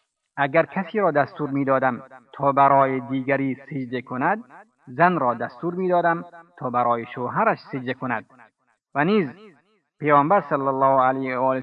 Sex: male